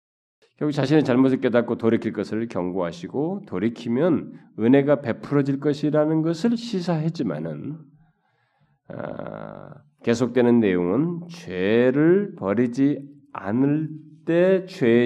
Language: Korean